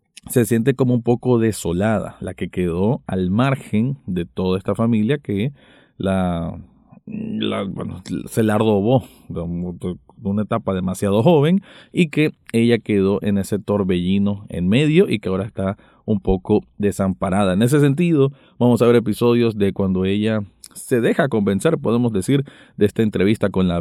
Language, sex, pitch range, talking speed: Spanish, male, 95-125 Hz, 150 wpm